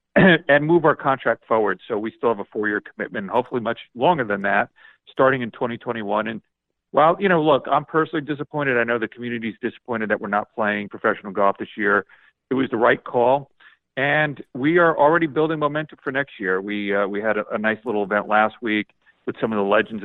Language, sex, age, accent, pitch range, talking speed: English, male, 40-59, American, 105-145 Hz, 215 wpm